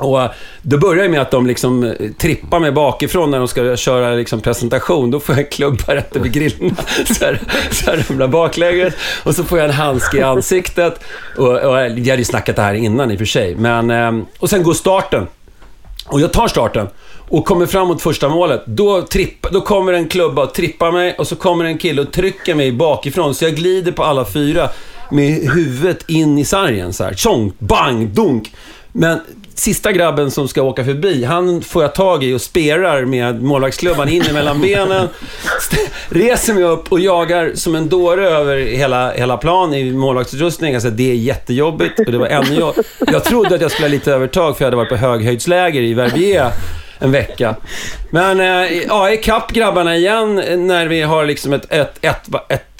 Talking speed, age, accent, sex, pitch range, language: 190 wpm, 40-59, Swedish, male, 125-175 Hz, English